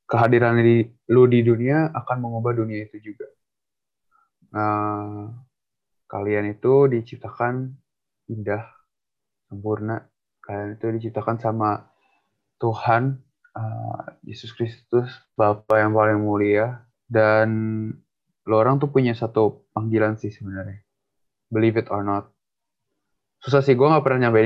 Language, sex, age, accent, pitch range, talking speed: Indonesian, male, 20-39, native, 105-120 Hz, 115 wpm